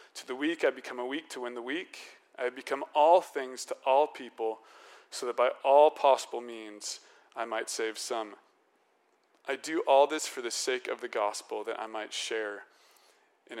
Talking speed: 190 wpm